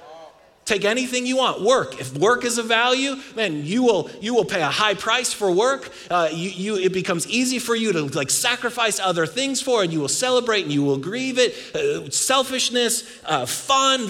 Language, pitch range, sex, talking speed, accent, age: English, 130-220 Hz, male, 205 wpm, American, 30-49